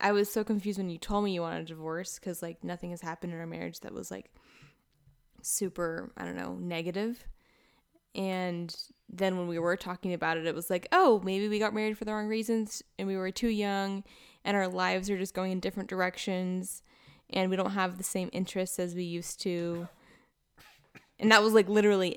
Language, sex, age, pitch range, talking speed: English, female, 10-29, 170-200 Hz, 210 wpm